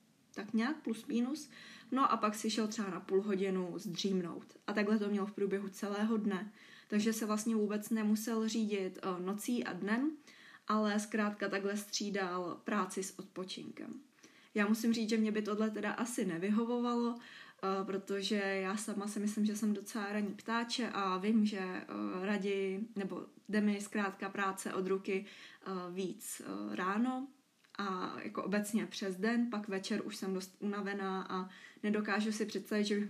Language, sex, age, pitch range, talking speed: Czech, female, 20-39, 195-225 Hz, 160 wpm